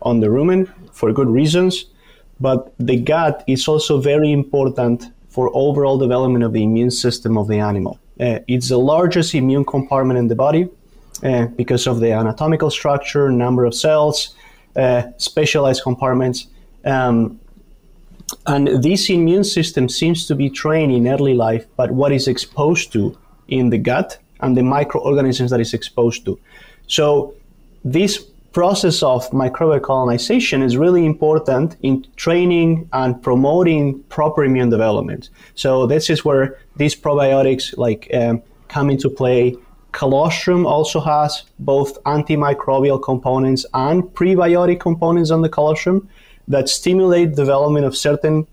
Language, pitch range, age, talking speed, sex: English, 125-160 Hz, 30-49, 140 wpm, male